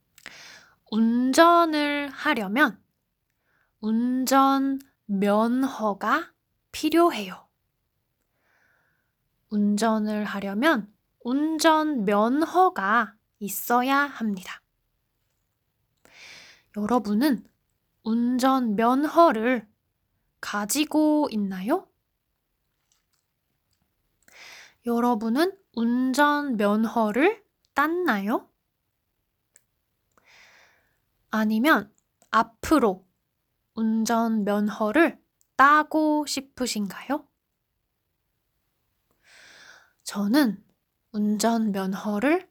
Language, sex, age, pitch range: Korean, female, 20-39, 210-300 Hz